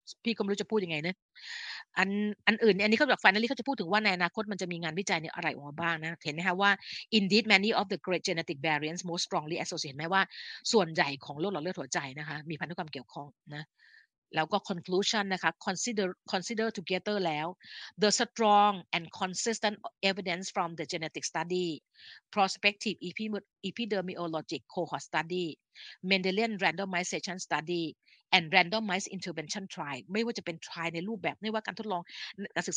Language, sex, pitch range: Thai, female, 170-210 Hz